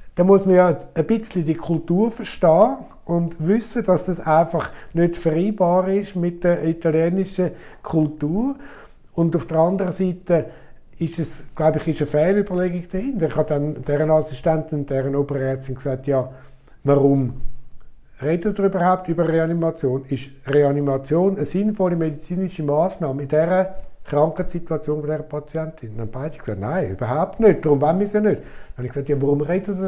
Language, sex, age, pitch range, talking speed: German, male, 60-79, 150-190 Hz, 165 wpm